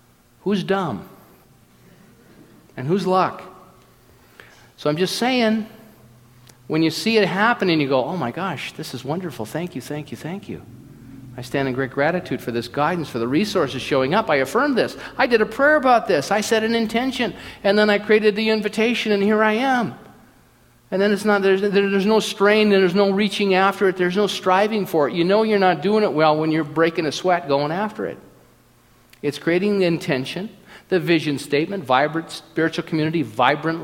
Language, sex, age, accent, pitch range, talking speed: English, male, 50-69, American, 145-205 Hz, 195 wpm